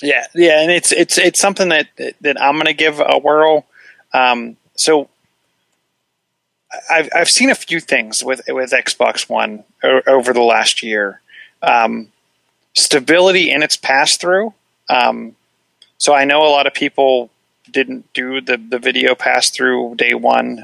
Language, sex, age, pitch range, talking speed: English, male, 30-49, 115-155 Hz, 160 wpm